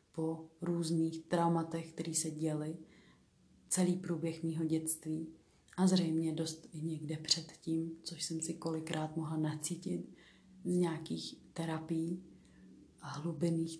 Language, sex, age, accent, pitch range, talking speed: Czech, female, 30-49, native, 160-180 Hz, 115 wpm